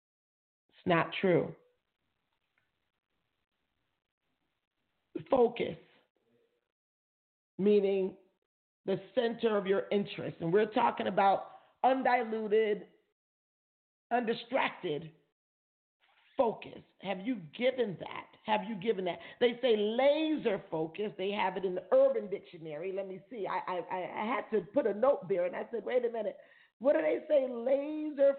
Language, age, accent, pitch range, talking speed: English, 40-59, American, 195-260 Hz, 125 wpm